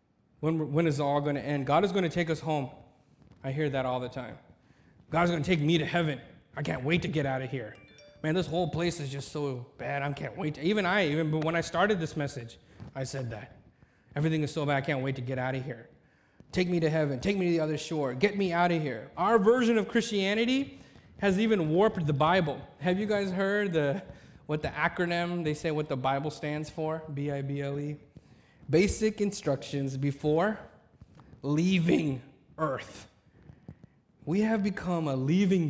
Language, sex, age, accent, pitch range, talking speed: English, male, 30-49, American, 140-205 Hz, 205 wpm